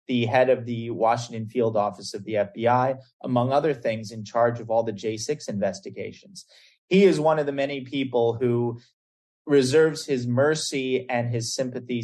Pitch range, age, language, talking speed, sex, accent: 110-130 Hz, 30-49, English, 170 wpm, male, American